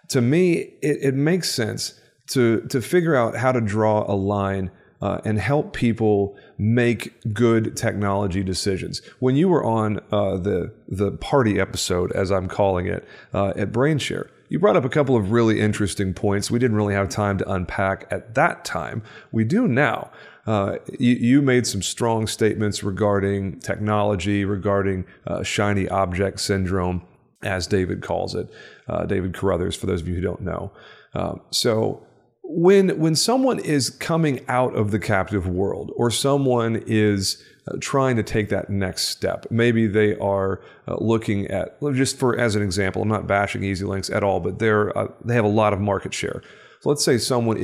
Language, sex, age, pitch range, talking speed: English, male, 40-59, 100-115 Hz, 180 wpm